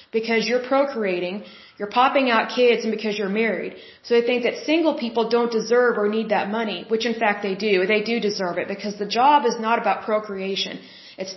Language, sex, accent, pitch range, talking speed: Hindi, female, American, 210-245 Hz, 210 wpm